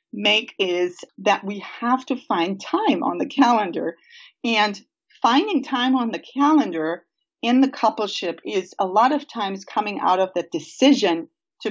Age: 40-59